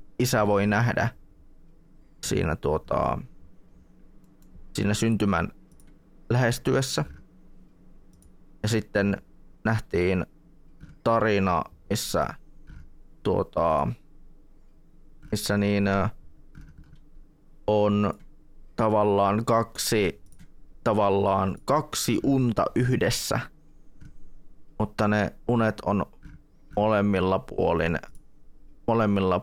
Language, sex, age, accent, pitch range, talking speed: Finnish, male, 20-39, native, 90-110 Hz, 60 wpm